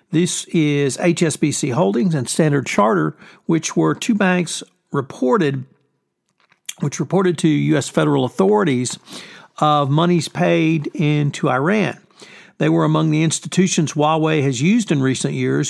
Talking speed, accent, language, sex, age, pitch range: 130 wpm, American, English, male, 60-79, 140-180 Hz